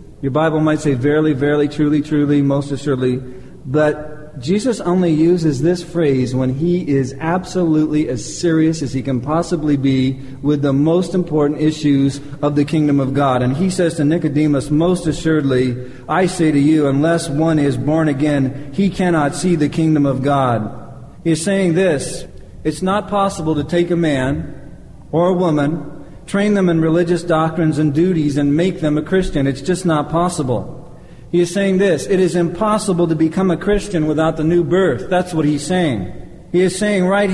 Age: 40-59